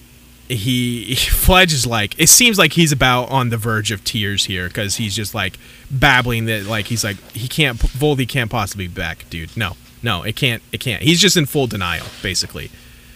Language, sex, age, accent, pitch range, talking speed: English, male, 30-49, American, 105-145 Hz, 205 wpm